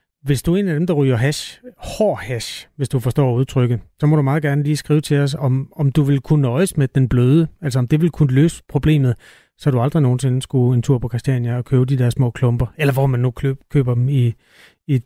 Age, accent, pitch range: 30-49, native, 130-160 Hz